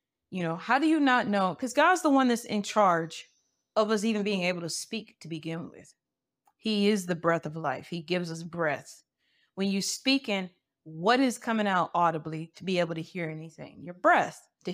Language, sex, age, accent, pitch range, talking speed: English, female, 30-49, American, 165-210 Hz, 210 wpm